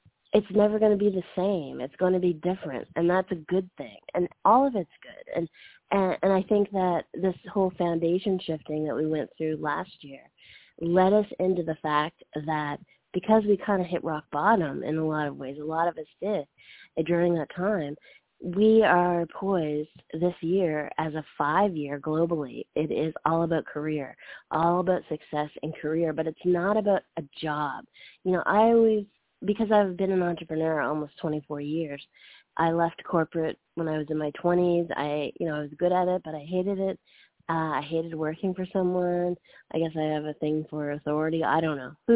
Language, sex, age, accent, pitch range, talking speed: English, female, 30-49, American, 155-185 Hz, 200 wpm